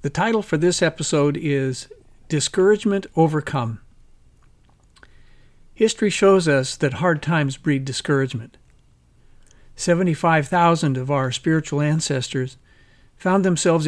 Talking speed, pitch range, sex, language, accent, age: 100 wpm, 135-175 Hz, male, English, American, 50-69